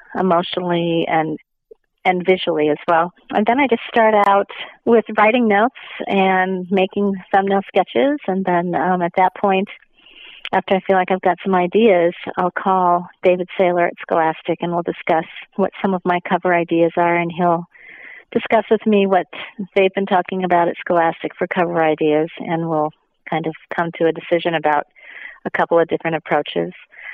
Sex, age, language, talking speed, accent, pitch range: female, 40-59, English, 175 wpm, American, 165-190 Hz